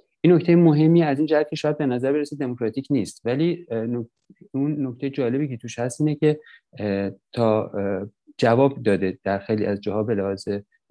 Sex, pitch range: male, 105-135 Hz